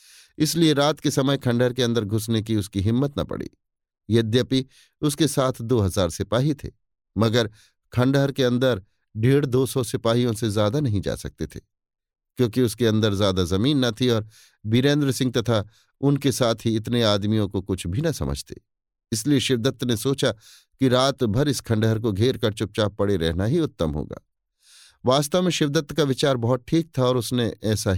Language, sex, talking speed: Hindi, male, 180 wpm